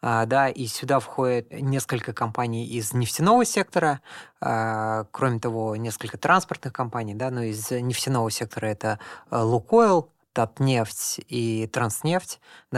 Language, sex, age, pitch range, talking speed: Russian, female, 20-39, 110-135 Hz, 125 wpm